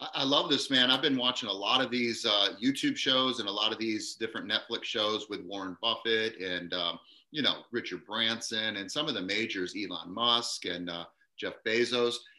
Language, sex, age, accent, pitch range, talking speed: English, male, 30-49, American, 100-140 Hz, 205 wpm